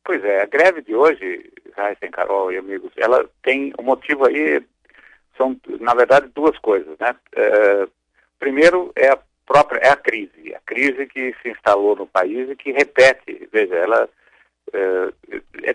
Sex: male